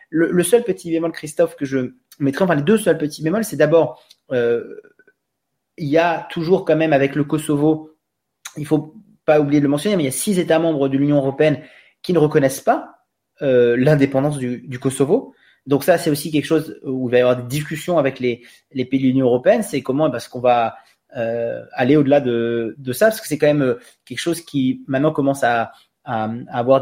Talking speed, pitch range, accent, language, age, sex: 220 wpm, 125-160 Hz, French, French, 30-49, male